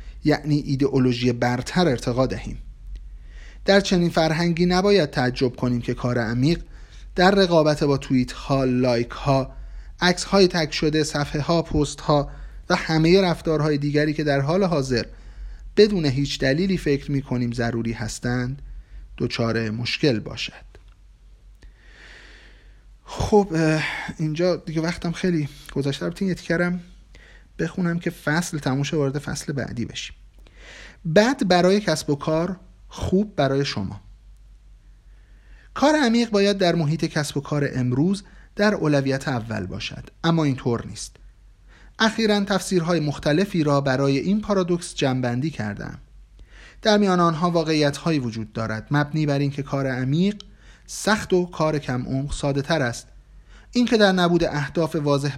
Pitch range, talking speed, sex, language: 130-175 Hz, 130 wpm, male, Persian